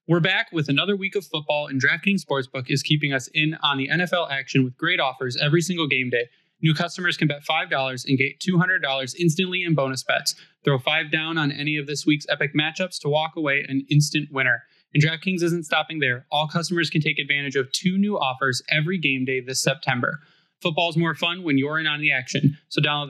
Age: 20-39